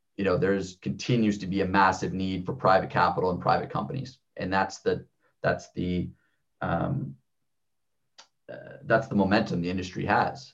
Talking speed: 160 wpm